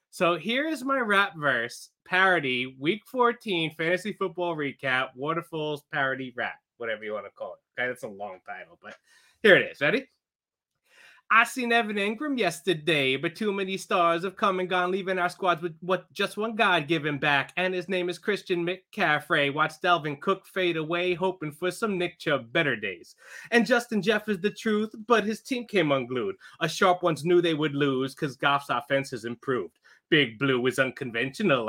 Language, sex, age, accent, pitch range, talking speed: English, male, 30-49, American, 155-200 Hz, 185 wpm